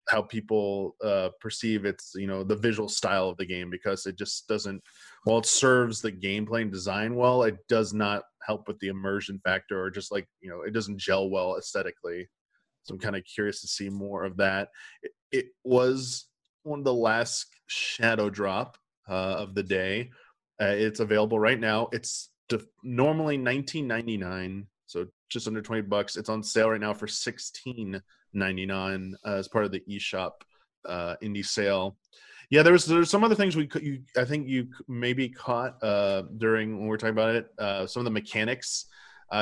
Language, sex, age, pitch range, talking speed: English, male, 20-39, 100-125 Hz, 195 wpm